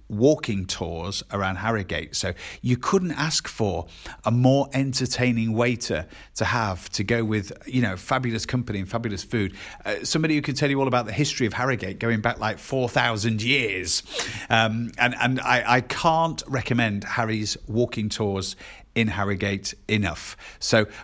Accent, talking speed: British, 165 wpm